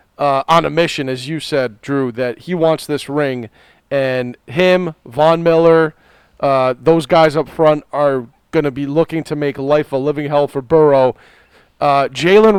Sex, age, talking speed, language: male, 40-59, 175 wpm, English